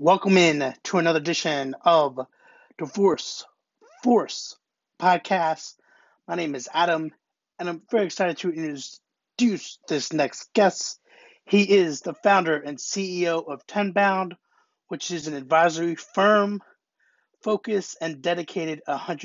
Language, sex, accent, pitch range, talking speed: English, male, American, 165-200 Hz, 120 wpm